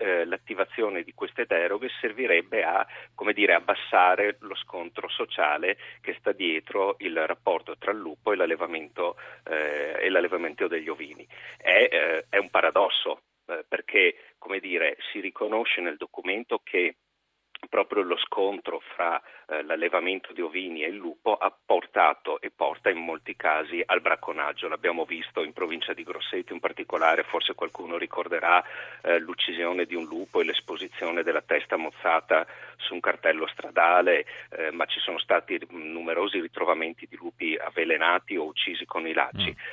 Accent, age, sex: native, 40-59, male